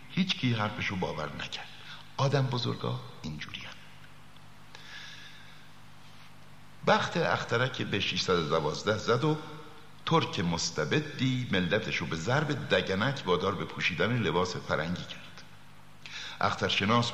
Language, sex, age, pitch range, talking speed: Persian, male, 60-79, 105-155 Hz, 105 wpm